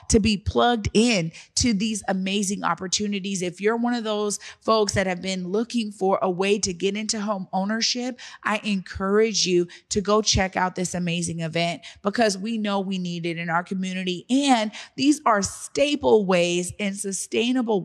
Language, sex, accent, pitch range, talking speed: English, female, American, 175-220 Hz, 175 wpm